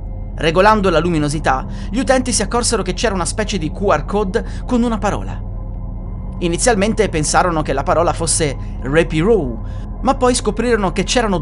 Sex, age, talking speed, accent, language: male, 30-49, 150 wpm, native, Italian